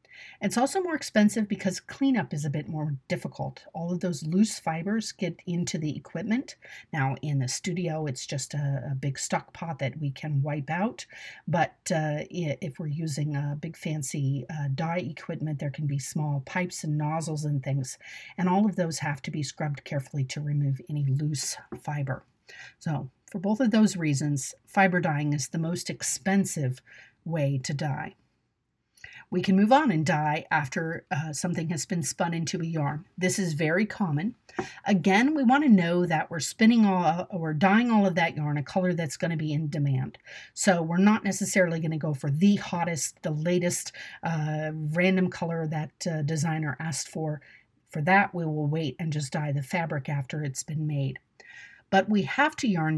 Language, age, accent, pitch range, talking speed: English, 50-69, American, 150-185 Hz, 190 wpm